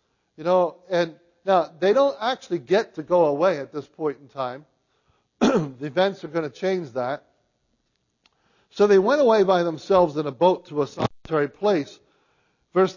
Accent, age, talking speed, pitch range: American, 50-69, 170 wpm, 150-190 Hz